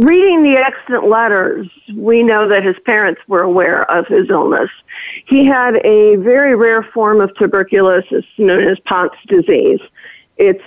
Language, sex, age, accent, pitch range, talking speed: English, female, 50-69, American, 195-265 Hz, 150 wpm